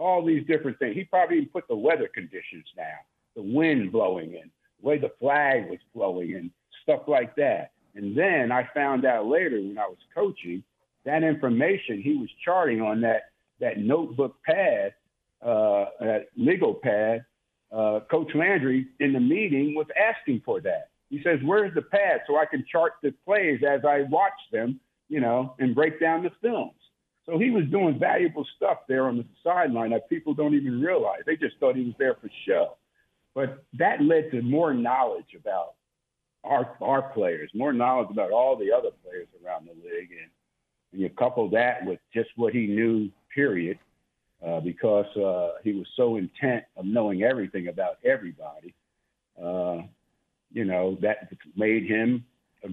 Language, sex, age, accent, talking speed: English, male, 60-79, American, 175 wpm